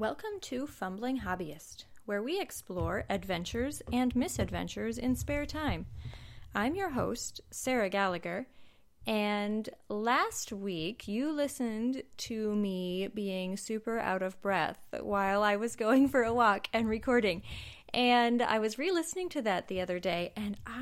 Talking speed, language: 140 wpm, English